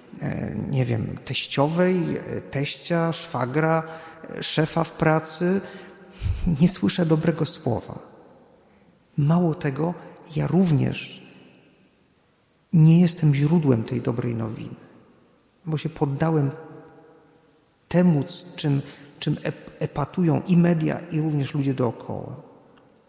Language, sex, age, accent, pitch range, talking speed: Polish, male, 40-59, native, 140-195 Hz, 95 wpm